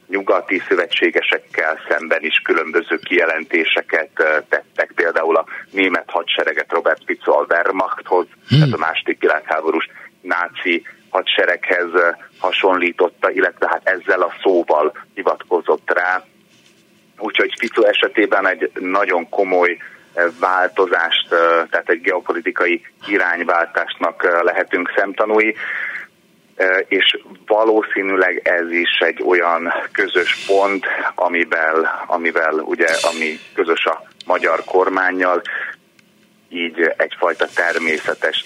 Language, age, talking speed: Hungarian, 30-49, 95 wpm